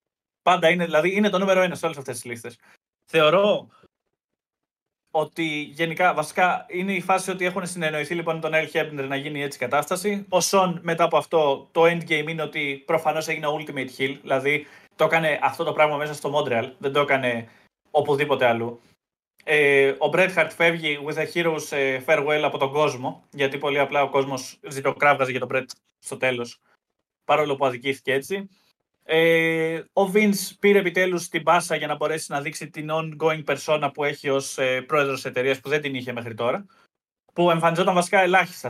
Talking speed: 185 wpm